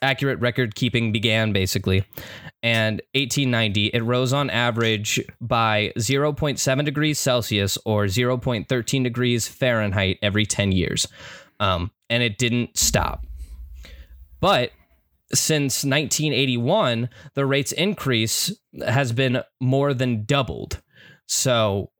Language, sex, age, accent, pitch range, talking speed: English, male, 10-29, American, 115-140 Hz, 105 wpm